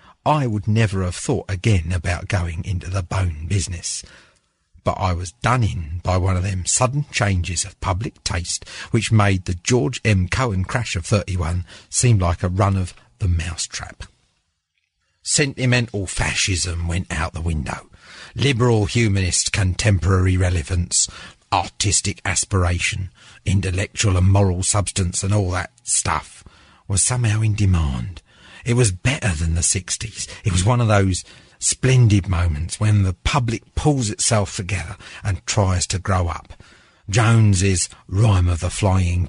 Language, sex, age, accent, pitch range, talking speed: English, male, 50-69, British, 90-105 Hz, 150 wpm